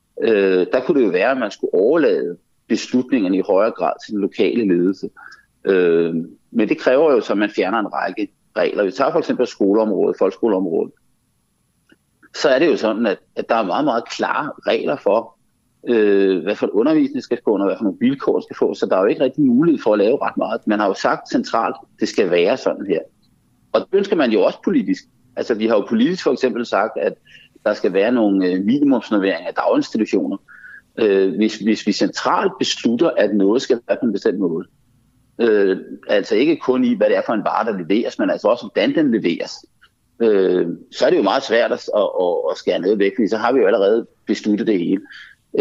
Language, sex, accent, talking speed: Danish, male, native, 210 wpm